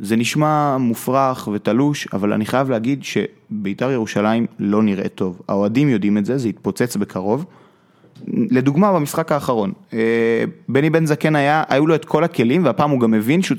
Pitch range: 110-145 Hz